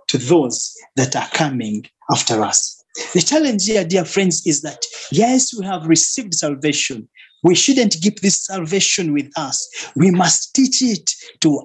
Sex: male